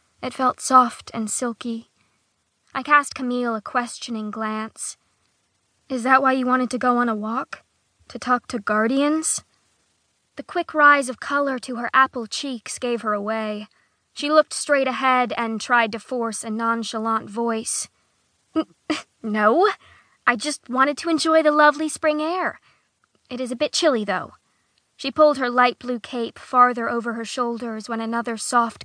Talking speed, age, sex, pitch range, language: 160 wpm, 20-39, female, 230-285 Hz, English